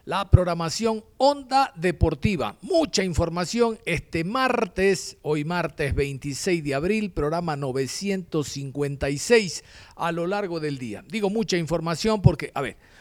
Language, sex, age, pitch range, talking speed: Spanish, male, 50-69, 140-210 Hz, 120 wpm